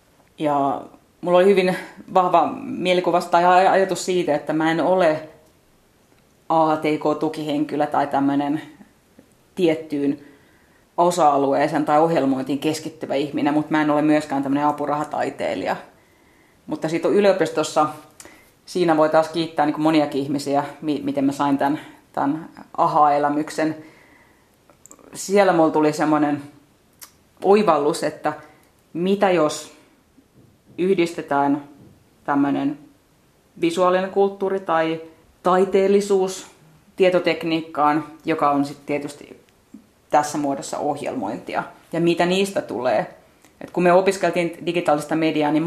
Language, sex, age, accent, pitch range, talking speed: Finnish, female, 30-49, native, 145-175 Hz, 105 wpm